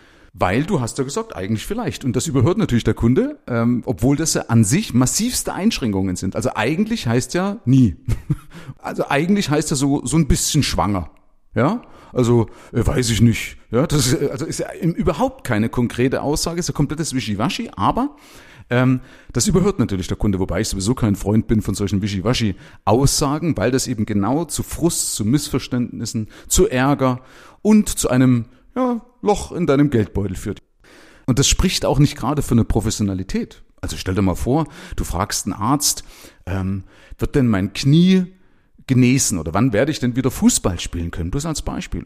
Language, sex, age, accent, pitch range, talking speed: German, male, 40-59, German, 105-155 Hz, 185 wpm